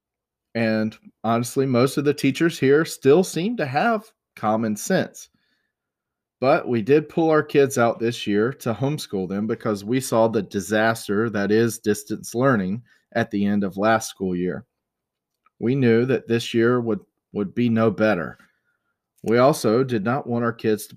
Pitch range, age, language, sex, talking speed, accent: 105-125 Hz, 40-59, English, male, 170 wpm, American